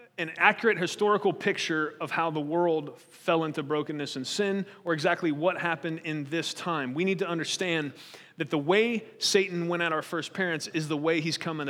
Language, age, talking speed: English, 30-49, 195 wpm